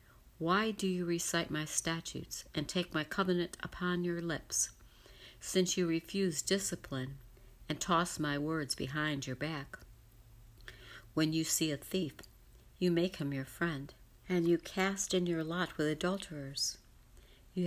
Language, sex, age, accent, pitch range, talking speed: English, female, 60-79, American, 140-175 Hz, 145 wpm